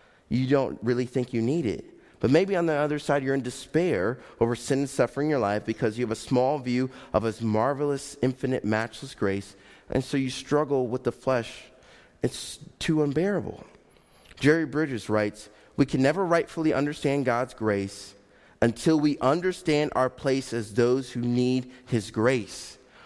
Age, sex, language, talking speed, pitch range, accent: 30-49, male, English, 170 wpm, 125-185 Hz, American